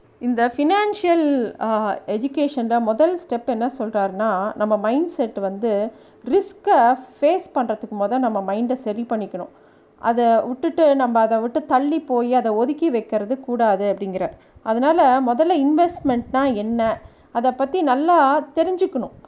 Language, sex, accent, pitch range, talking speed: Tamil, female, native, 230-300 Hz, 120 wpm